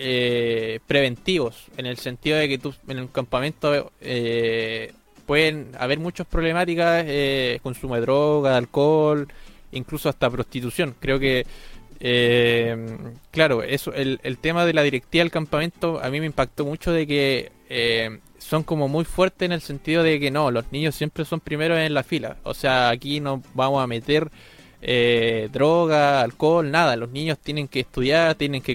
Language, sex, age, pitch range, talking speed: Spanish, male, 20-39, 130-160 Hz, 170 wpm